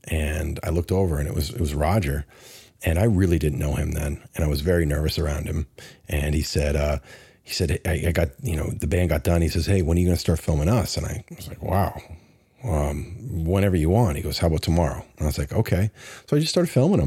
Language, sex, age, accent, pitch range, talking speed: English, male, 40-59, American, 75-95 Hz, 260 wpm